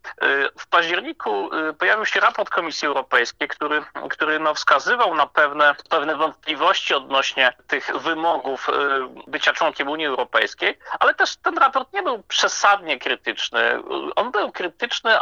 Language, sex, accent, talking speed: Polish, male, native, 130 wpm